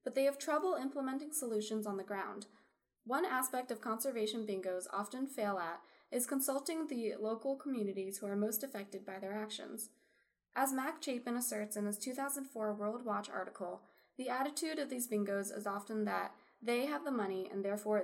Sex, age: female, 10-29